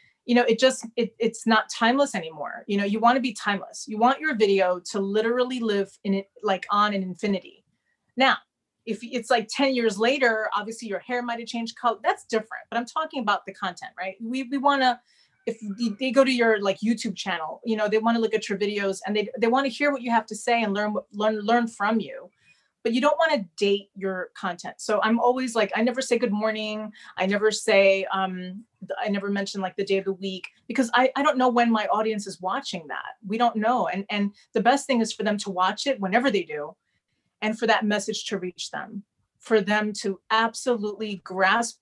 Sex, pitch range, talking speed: female, 200-240 Hz, 220 wpm